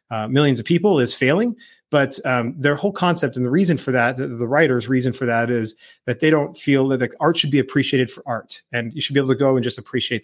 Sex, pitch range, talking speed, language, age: male, 125-150 Hz, 265 wpm, English, 30-49